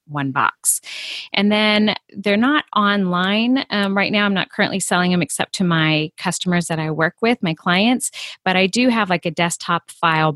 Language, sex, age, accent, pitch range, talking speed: English, female, 30-49, American, 155-180 Hz, 190 wpm